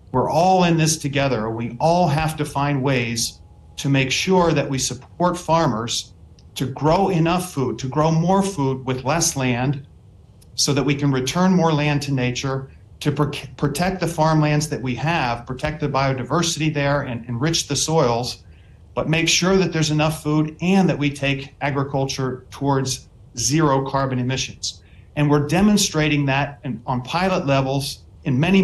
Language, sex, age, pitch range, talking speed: English, male, 50-69, 130-160 Hz, 165 wpm